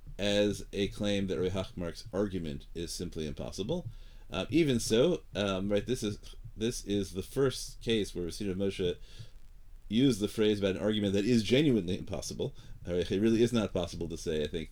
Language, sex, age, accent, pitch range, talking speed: English, male, 30-49, American, 90-110 Hz, 175 wpm